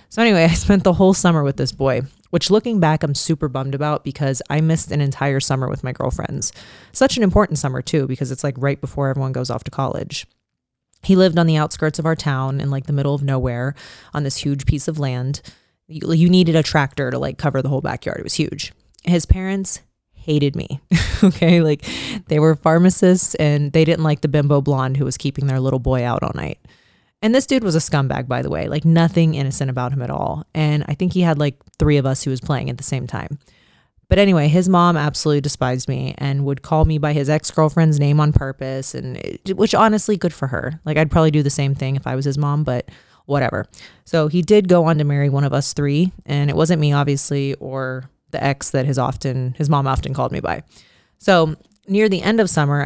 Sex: female